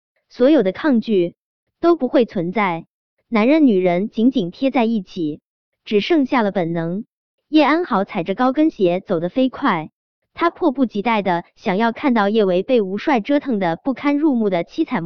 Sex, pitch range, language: male, 185-275 Hz, Chinese